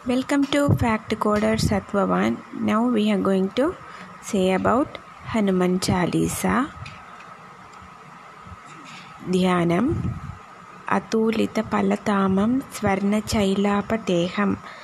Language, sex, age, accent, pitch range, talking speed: Tamil, female, 20-39, native, 200-220 Hz, 60 wpm